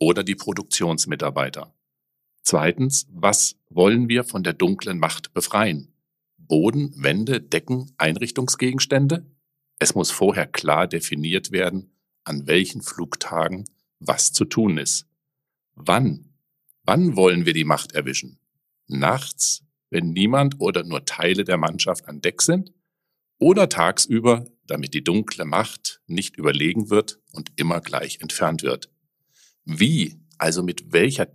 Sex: male